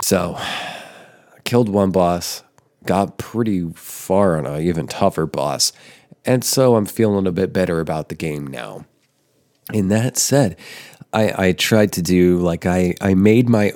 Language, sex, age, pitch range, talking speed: English, male, 30-49, 85-100 Hz, 160 wpm